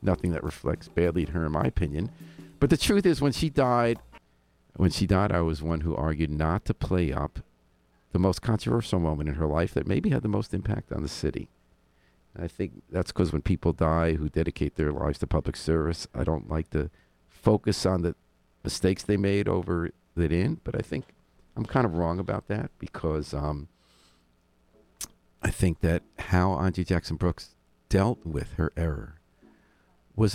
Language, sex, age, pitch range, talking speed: English, male, 50-69, 75-95 Hz, 185 wpm